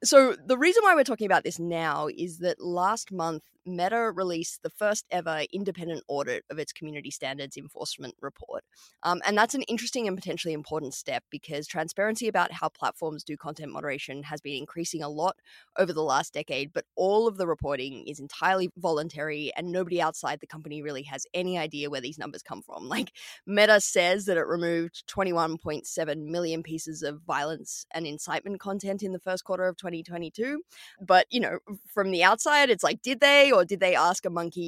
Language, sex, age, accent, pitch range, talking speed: English, female, 20-39, Australian, 155-190 Hz, 190 wpm